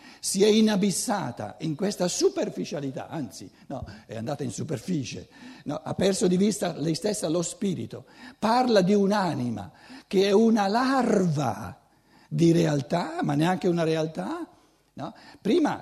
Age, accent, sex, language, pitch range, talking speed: 60-79, native, male, Italian, 150-210 Hz, 130 wpm